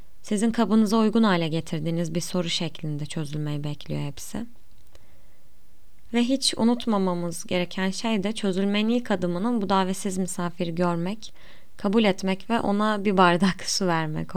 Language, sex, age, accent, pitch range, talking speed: Turkish, female, 20-39, native, 175-210 Hz, 135 wpm